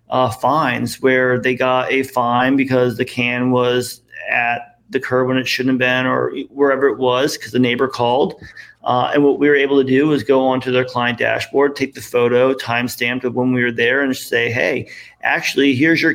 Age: 40-59